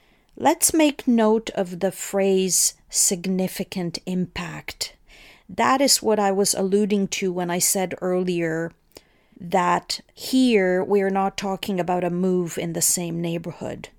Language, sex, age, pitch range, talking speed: English, female, 40-59, 180-215 Hz, 135 wpm